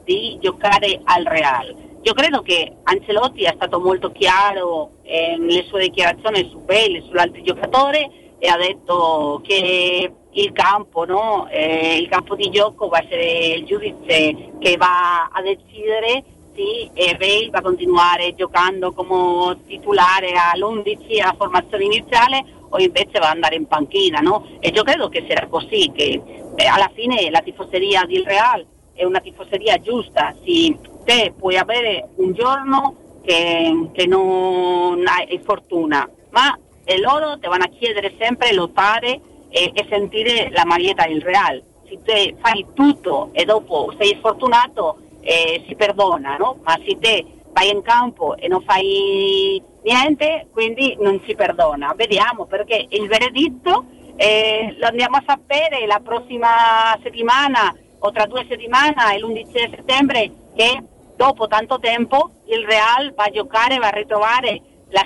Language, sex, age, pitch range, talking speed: Italian, female, 40-59, 185-270 Hz, 155 wpm